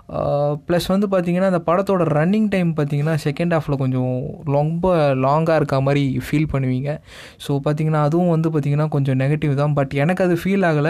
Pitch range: 140-165 Hz